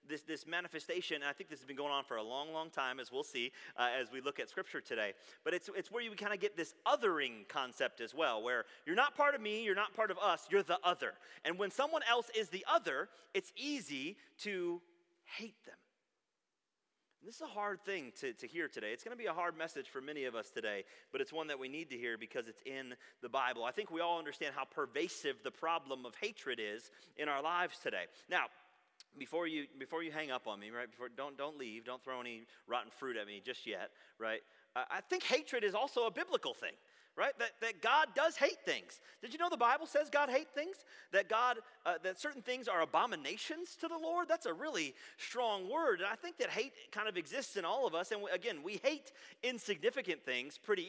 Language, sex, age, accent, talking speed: English, male, 30-49, American, 235 wpm